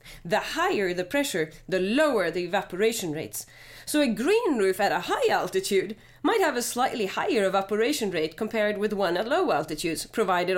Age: 30-49